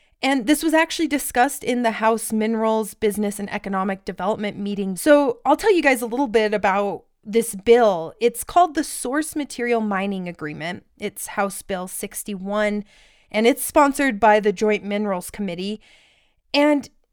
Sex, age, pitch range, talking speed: female, 20-39, 205-250 Hz, 160 wpm